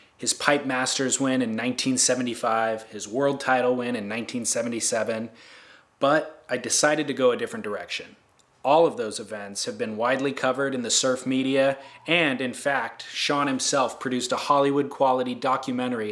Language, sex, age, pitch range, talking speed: English, male, 20-39, 115-135 Hz, 155 wpm